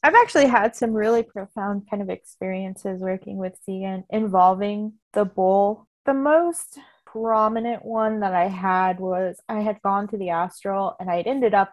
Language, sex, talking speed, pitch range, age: English, female, 170 wpm, 195-270 Hz, 20-39